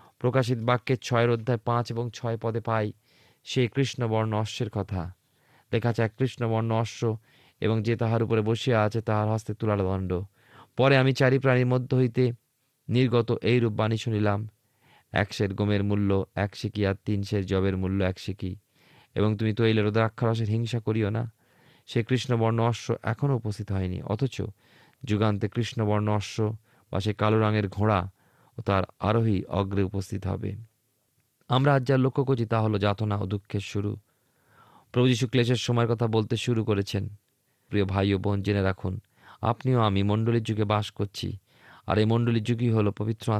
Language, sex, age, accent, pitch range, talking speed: Bengali, male, 30-49, native, 105-120 Hz, 100 wpm